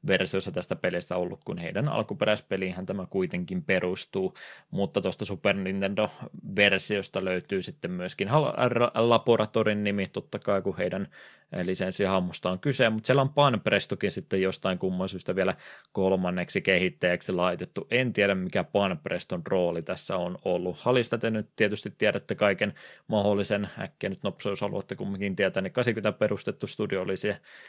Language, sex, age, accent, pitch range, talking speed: Finnish, male, 20-39, native, 95-110 Hz, 145 wpm